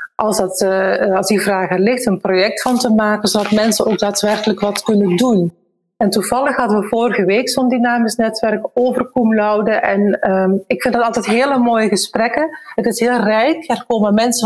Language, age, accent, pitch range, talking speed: Dutch, 40-59, Dutch, 205-245 Hz, 190 wpm